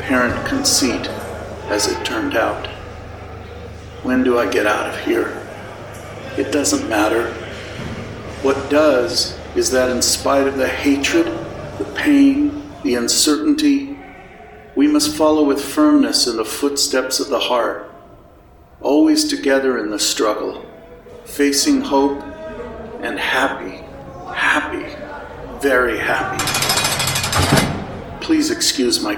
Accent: American